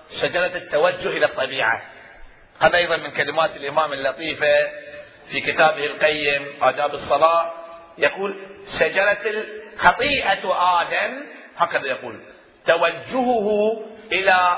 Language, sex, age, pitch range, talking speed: Arabic, male, 40-59, 150-195 Hz, 95 wpm